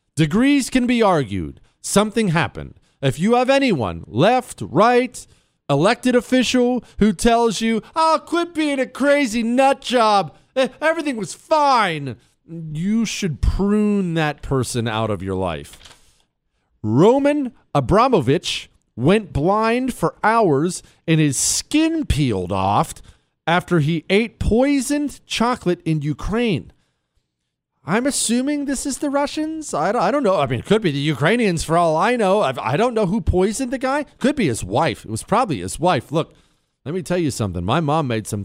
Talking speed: 160 wpm